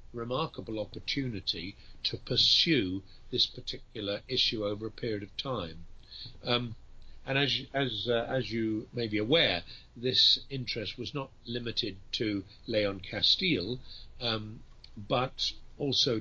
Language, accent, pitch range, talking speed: English, British, 105-130 Hz, 125 wpm